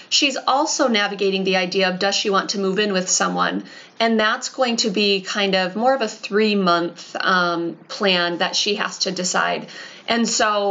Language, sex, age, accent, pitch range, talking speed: English, female, 20-39, American, 185-215 Hz, 190 wpm